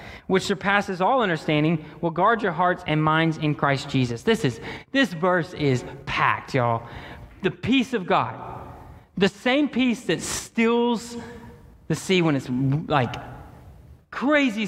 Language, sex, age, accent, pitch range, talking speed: English, male, 30-49, American, 155-225 Hz, 145 wpm